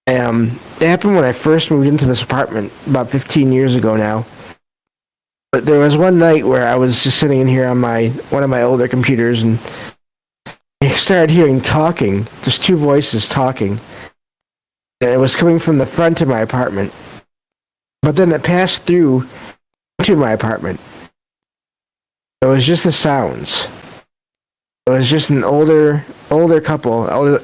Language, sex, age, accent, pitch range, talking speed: English, male, 50-69, American, 125-150 Hz, 160 wpm